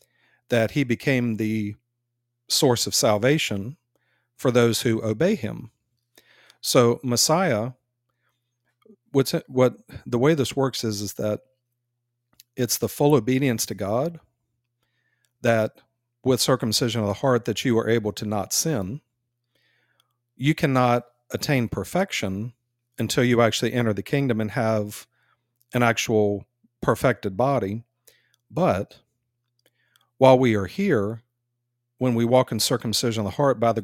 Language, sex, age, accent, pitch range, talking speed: English, male, 40-59, American, 110-130 Hz, 130 wpm